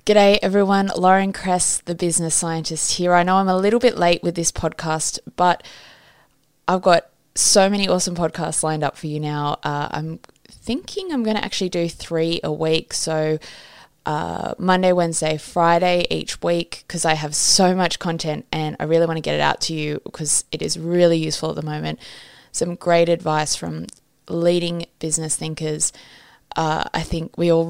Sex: female